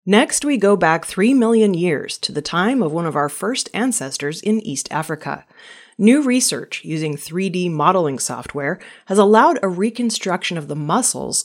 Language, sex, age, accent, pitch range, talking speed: English, female, 30-49, American, 155-225 Hz, 170 wpm